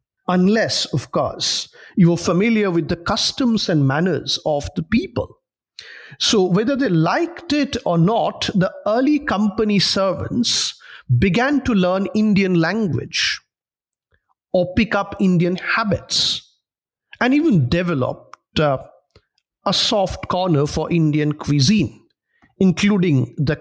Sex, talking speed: male, 120 wpm